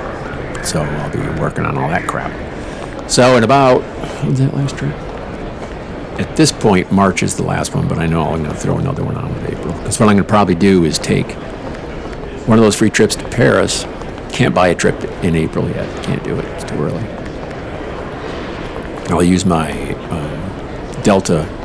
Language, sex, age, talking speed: English, male, 50-69, 190 wpm